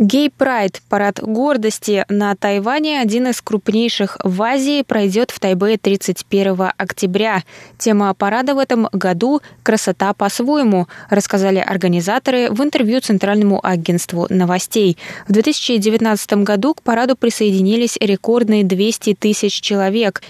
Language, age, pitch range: Russian, 20-39, 190-235 Hz